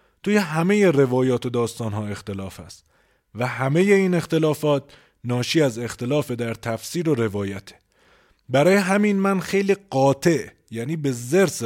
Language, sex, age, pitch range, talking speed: Persian, male, 30-49, 115-155 Hz, 135 wpm